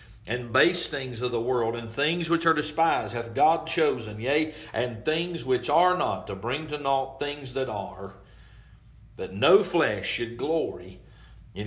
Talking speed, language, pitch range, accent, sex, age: 170 wpm, English, 120-160 Hz, American, male, 40-59